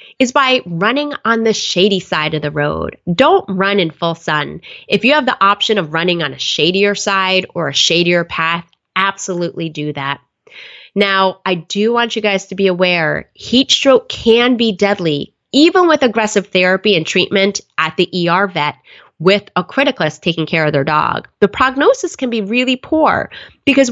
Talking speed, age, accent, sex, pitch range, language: 180 wpm, 20-39, American, female, 170-220 Hz, English